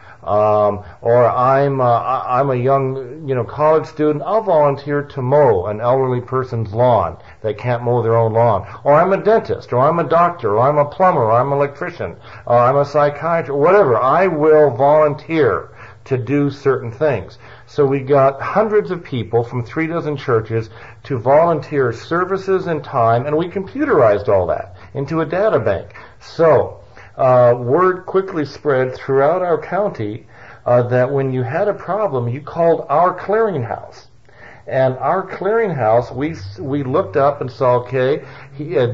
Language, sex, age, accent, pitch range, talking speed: English, male, 50-69, American, 120-155 Hz, 165 wpm